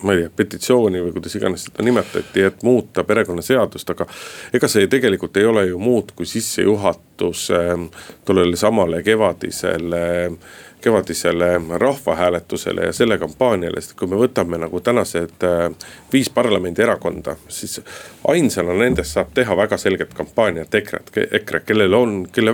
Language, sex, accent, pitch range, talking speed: Finnish, male, native, 90-120 Hz, 140 wpm